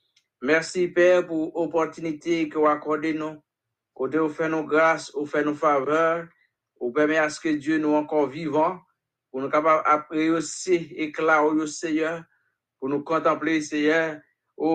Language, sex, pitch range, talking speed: English, male, 150-165 Hz, 140 wpm